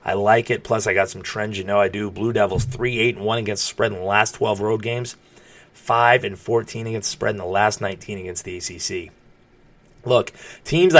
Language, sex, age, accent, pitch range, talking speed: English, male, 30-49, American, 110-130 Hz, 200 wpm